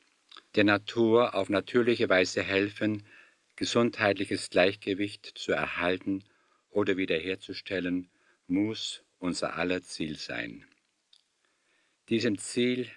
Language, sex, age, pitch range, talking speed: German, male, 50-69, 95-110 Hz, 90 wpm